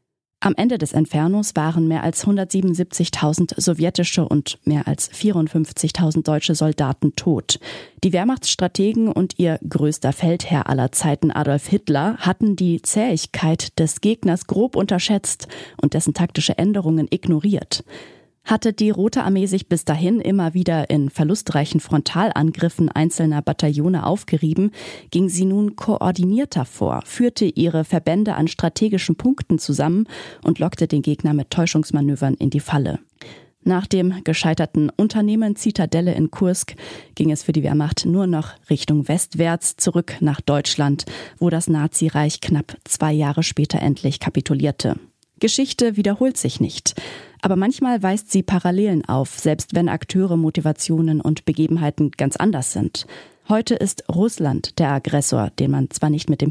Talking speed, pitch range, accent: 140 wpm, 150-190 Hz, German